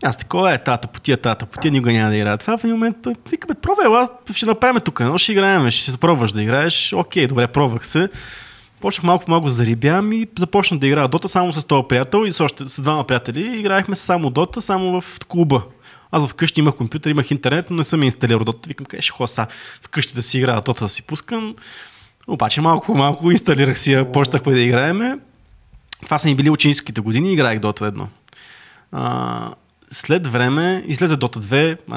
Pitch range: 120-160 Hz